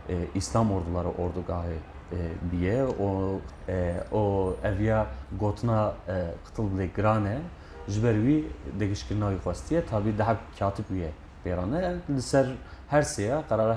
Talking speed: 100 wpm